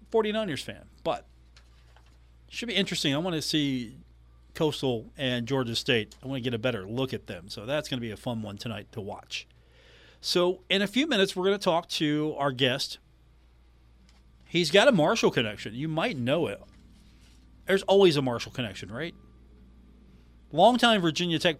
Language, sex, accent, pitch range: English, male, American, 110-155 Hz